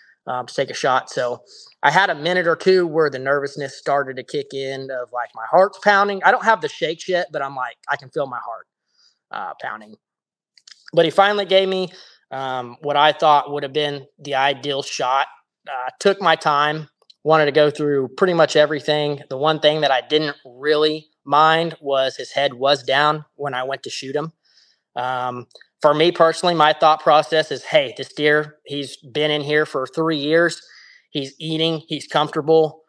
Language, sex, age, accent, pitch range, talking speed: English, male, 20-39, American, 140-165 Hz, 195 wpm